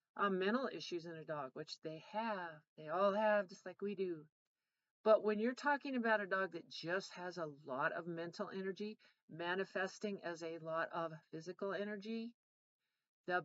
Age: 40-59